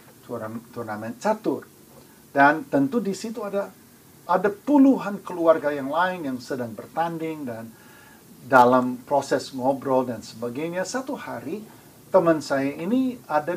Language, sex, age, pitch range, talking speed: Indonesian, male, 50-69, 125-200 Hz, 120 wpm